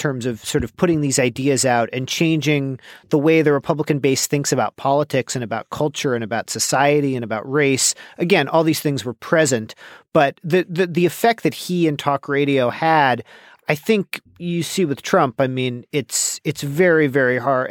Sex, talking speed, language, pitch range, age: male, 195 wpm, English, 135-170 Hz, 40-59